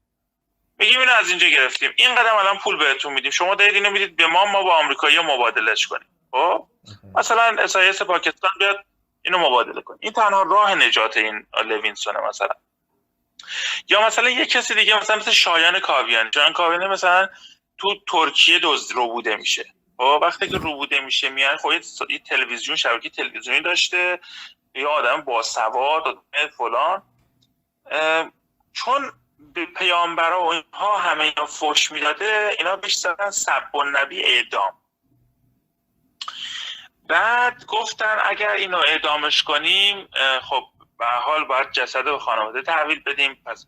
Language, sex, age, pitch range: Persian, male, 30-49, 150-210 Hz